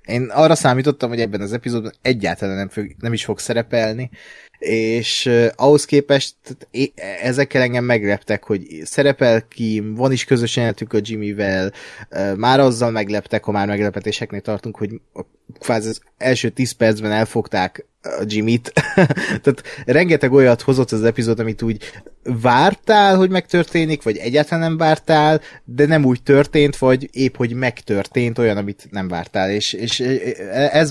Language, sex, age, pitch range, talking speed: Hungarian, male, 20-39, 105-125 Hz, 145 wpm